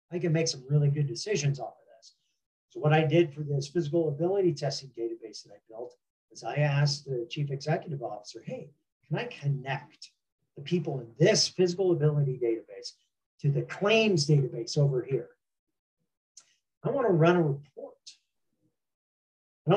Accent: American